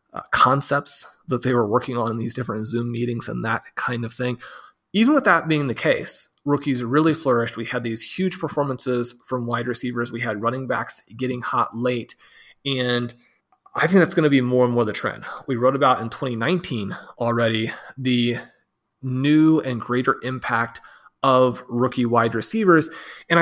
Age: 30-49